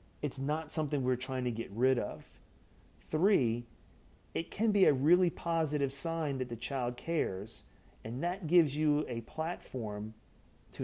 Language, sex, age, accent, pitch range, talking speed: English, male, 40-59, American, 105-150 Hz, 155 wpm